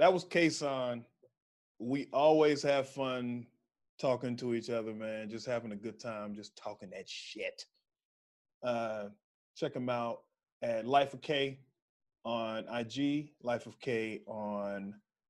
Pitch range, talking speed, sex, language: 110-145 Hz, 135 wpm, male, English